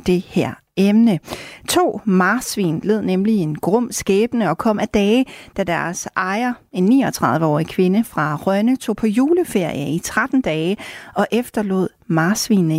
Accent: native